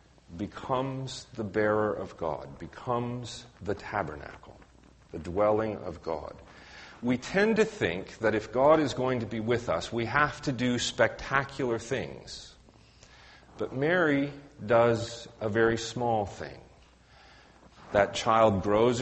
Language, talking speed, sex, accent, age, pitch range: English, 130 wpm, male, American, 40-59, 95-120 Hz